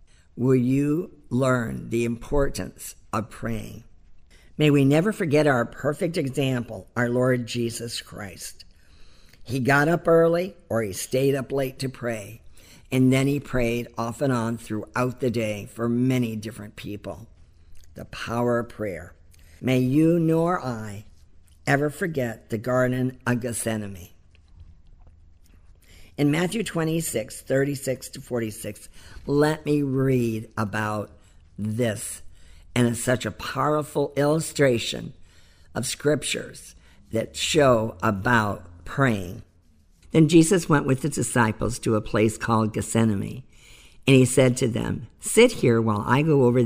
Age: 50-69